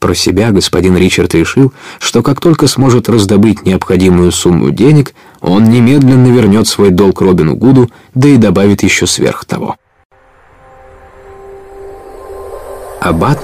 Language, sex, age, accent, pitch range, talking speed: Russian, male, 20-39, native, 100-135 Hz, 120 wpm